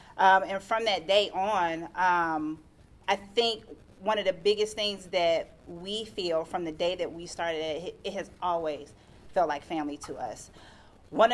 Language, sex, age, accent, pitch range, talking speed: English, female, 30-49, American, 170-205 Hz, 175 wpm